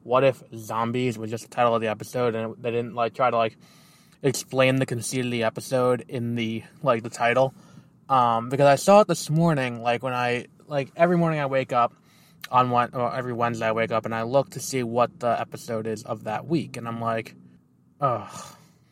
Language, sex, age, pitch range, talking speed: English, male, 20-39, 120-150 Hz, 215 wpm